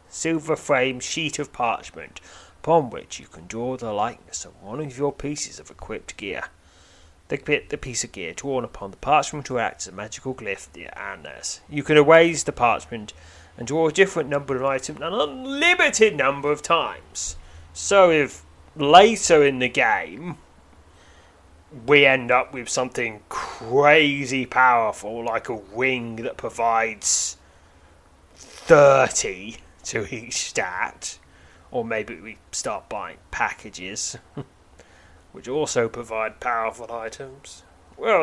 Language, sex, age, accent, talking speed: English, male, 30-49, British, 135 wpm